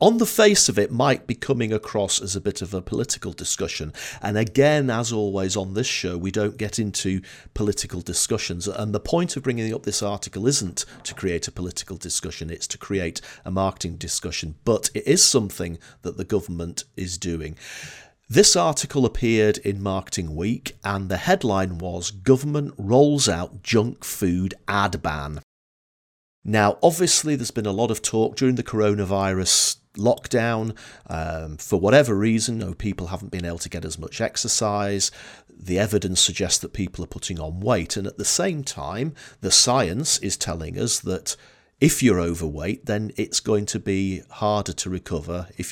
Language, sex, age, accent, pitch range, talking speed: English, male, 40-59, British, 90-115 Hz, 175 wpm